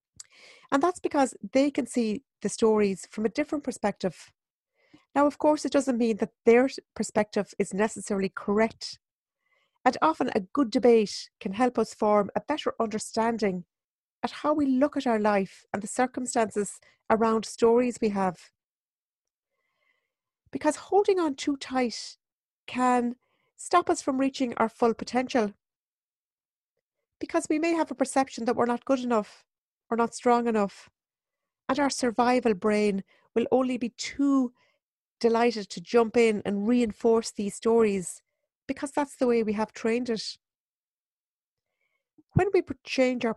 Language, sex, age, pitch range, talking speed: English, female, 40-59, 215-275 Hz, 145 wpm